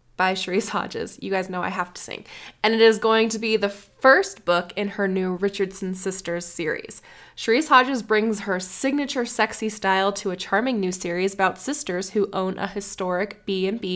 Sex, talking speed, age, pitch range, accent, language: female, 185 wpm, 10-29, 185-220 Hz, American, English